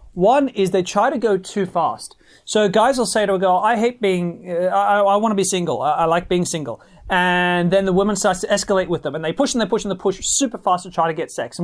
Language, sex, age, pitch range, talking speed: English, male, 30-49, 165-195 Hz, 290 wpm